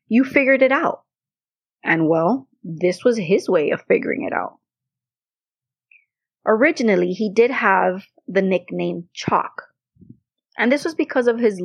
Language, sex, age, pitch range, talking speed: English, female, 30-49, 175-240 Hz, 140 wpm